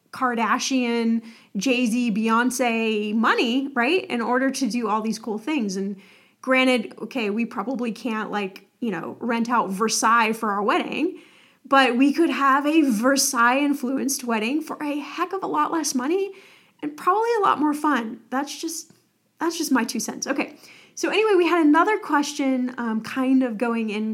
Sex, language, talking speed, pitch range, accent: female, English, 170 wpm, 225-280 Hz, American